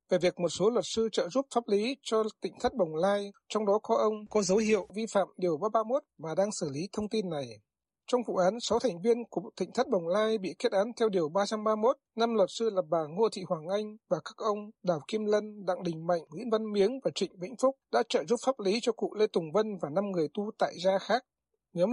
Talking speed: 255 wpm